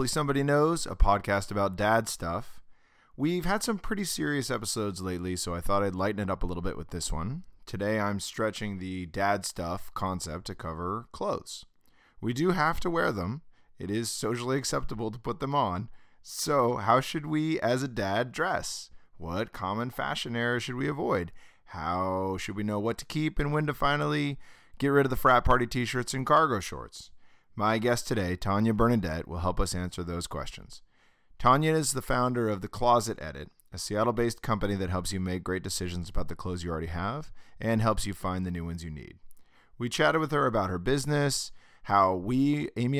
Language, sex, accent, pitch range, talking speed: English, male, American, 95-130 Hz, 195 wpm